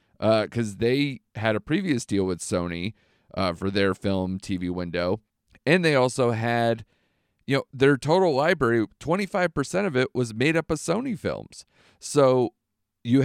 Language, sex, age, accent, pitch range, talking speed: English, male, 40-59, American, 100-135 Hz, 160 wpm